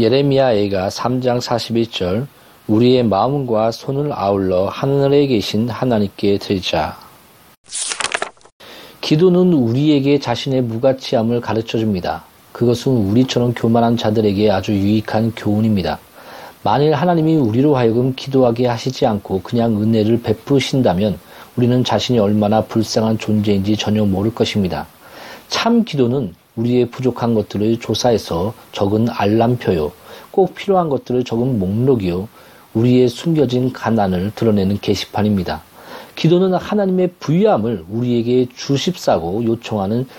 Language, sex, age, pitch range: Korean, male, 40-59, 105-135 Hz